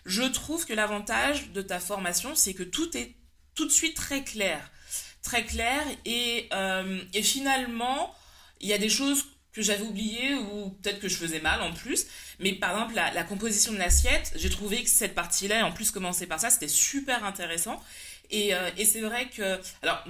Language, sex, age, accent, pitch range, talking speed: French, female, 20-39, French, 180-235 Hz, 195 wpm